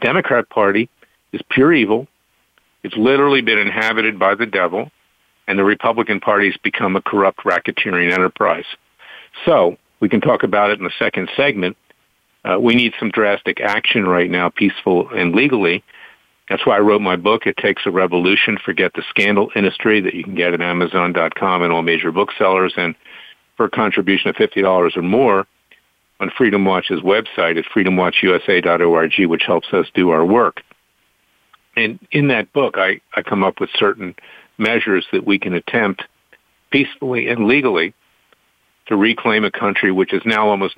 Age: 50-69